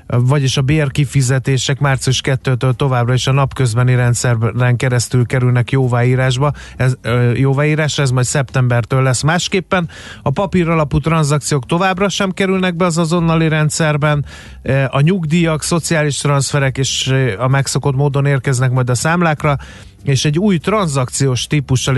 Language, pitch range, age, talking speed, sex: Hungarian, 130-155 Hz, 30-49, 130 wpm, male